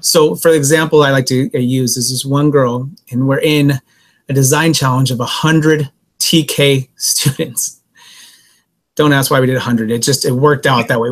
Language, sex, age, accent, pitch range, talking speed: English, male, 30-49, American, 140-170 Hz, 180 wpm